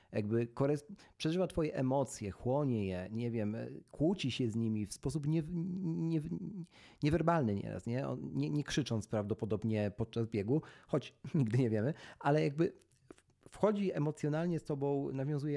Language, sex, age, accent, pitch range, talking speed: Polish, male, 40-59, native, 115-150 Hz, 125 wpm